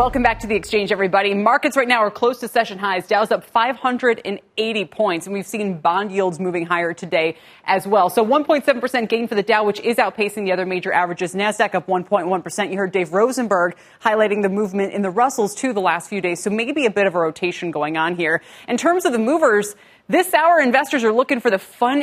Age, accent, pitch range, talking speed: 30-49, American, 180-230 Hz, 225 wpm